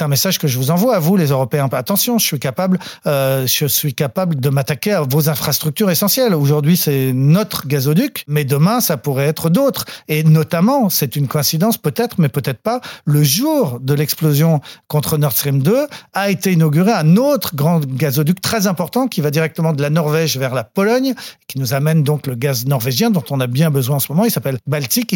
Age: 40-59